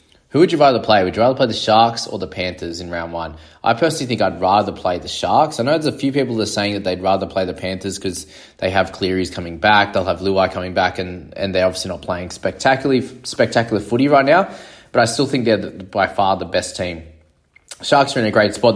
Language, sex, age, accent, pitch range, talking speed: English, male, 20-39, Australian, 90-110 Hz, 255 wpm